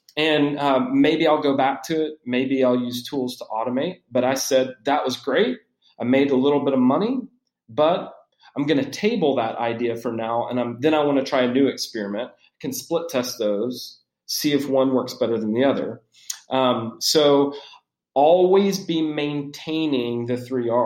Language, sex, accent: English, male, American